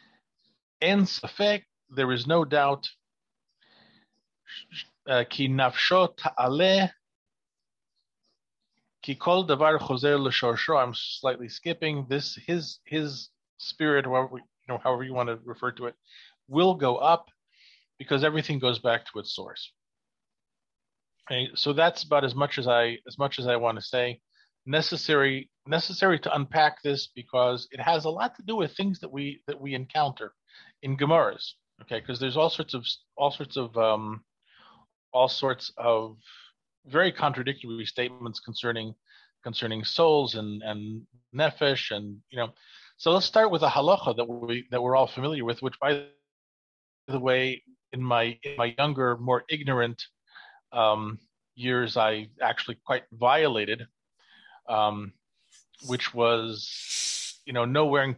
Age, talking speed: 40-59, 135 wpm